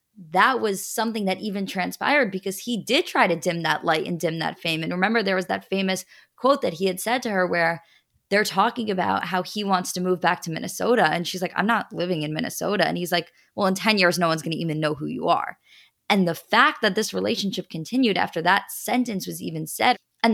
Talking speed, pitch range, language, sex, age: 240 wpm, 175-230 Hz, English, female, 20-39